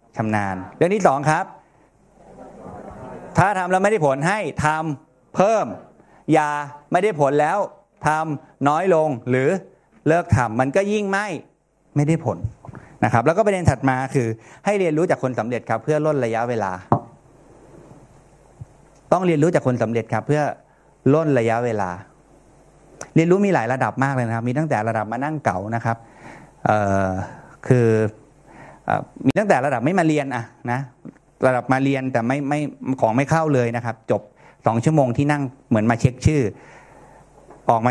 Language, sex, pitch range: Thai, male, 115-145 Hz